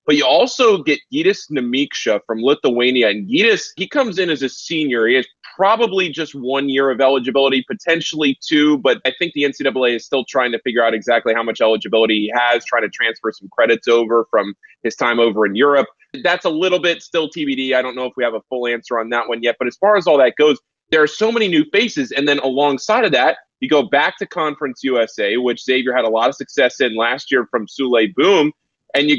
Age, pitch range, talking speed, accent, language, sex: 20-39, 120-150 Hz, 230 wpm, American, English, male